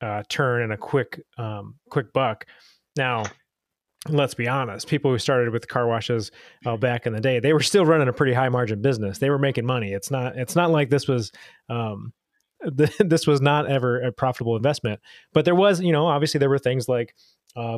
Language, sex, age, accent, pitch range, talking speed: English, male, 30-49, American, 115-145 Hz, 215 wpm